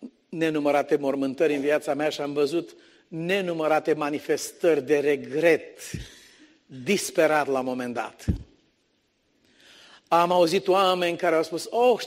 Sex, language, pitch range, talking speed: male, Romanian, 155-220 Hz, 120 wpm